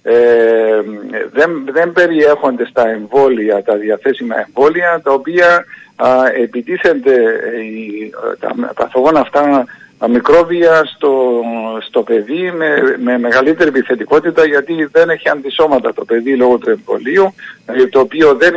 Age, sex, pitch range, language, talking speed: 50-69, male, 125-165 Hz, Greek, 125 wpm